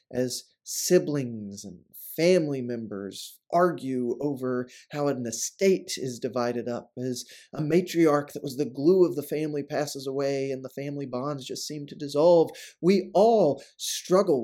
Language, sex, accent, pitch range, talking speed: English, male, American, 135-200 Hz, 150 wpm